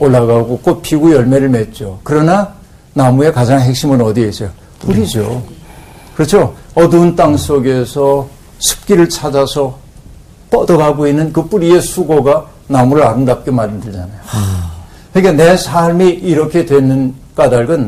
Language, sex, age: Korean, male, 60-79